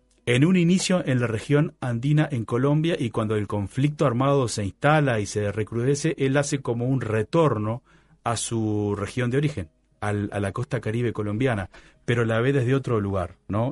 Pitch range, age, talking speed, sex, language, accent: 105-130 Hz, 30-49, 185 wpm, male, Spanish, Argentinian